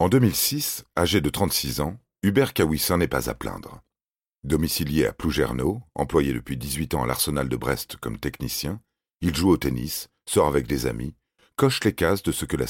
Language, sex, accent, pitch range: French, male, French, 70-90 Hz